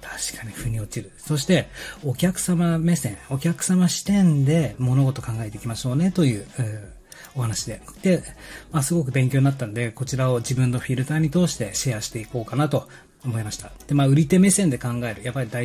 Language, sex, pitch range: Japanese, male, 120-160 Hz